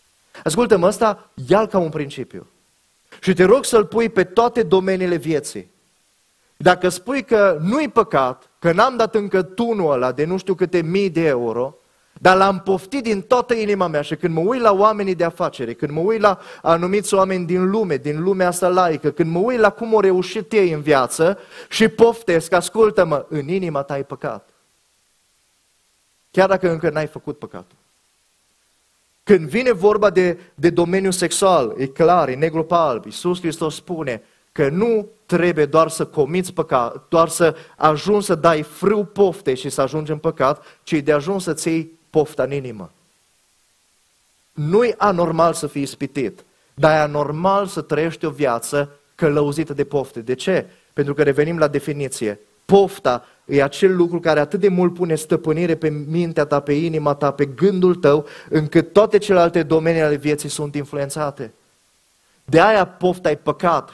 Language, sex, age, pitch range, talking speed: Romanian, male, 30-49, 150-190 Hz, 170 wpm